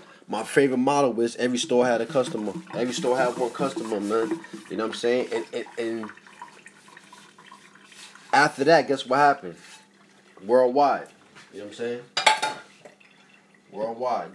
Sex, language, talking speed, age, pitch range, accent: male, English, 145 wpm, 30-49, 105-125 Hz, American